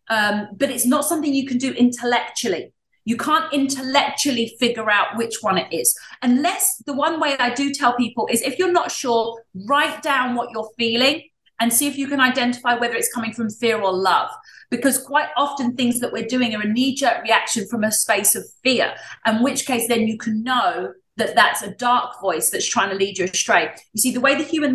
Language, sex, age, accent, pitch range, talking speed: English, female, 30-49, British, 210-260 Hz, 215 wpm